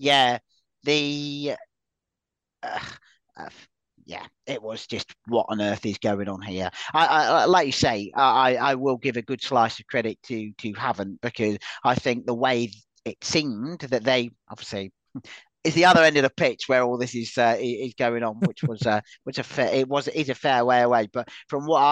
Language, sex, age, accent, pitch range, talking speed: English, male, 40-59, British, 115-140 Hz, 205 wpm